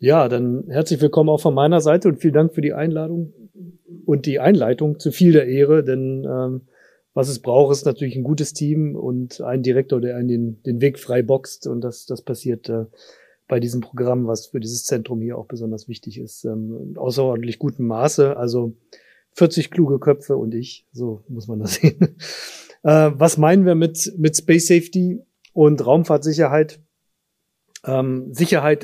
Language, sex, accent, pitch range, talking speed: German, male, German, 125-155 Hz, 175 wpm